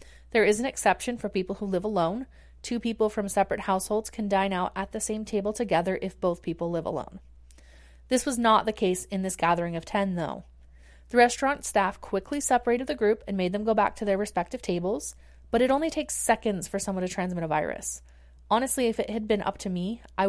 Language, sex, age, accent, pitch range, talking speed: English, female, 30-49, American, 175-220 Hz, 220 wpm